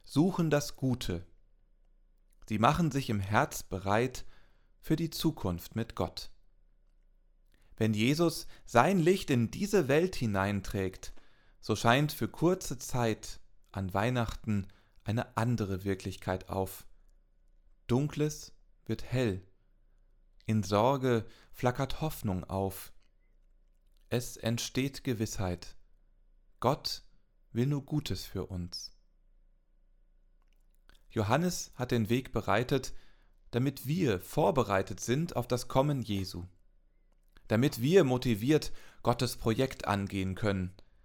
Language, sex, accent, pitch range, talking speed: German, male, German, 95-130 Hz, 100 wpm